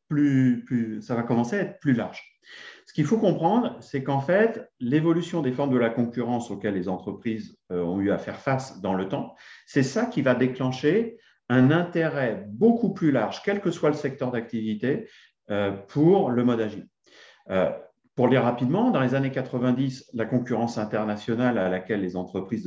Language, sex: French, male